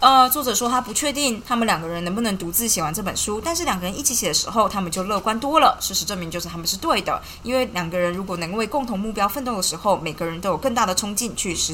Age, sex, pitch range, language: 20-39, female, 175-245 Hz, Chinese